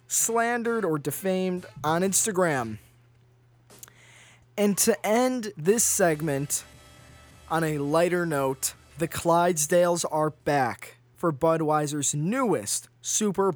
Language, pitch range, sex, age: English, 135-185 Hz, male, 20-39